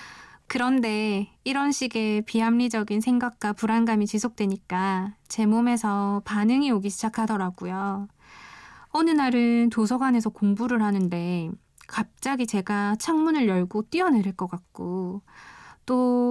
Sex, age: female, 20-39